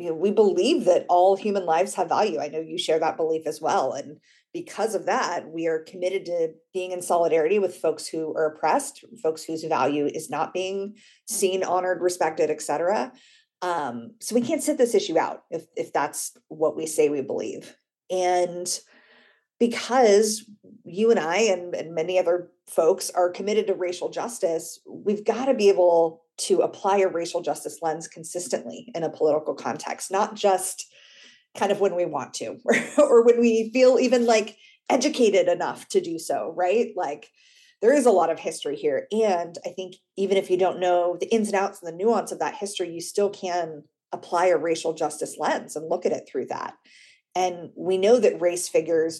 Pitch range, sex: 165-225 Hz, female